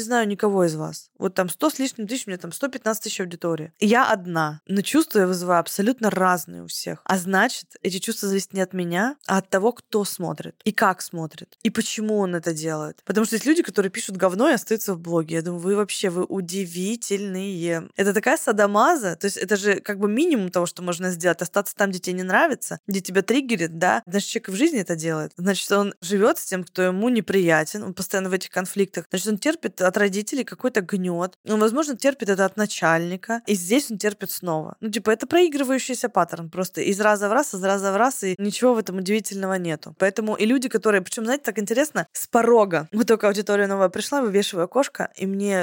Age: 20-39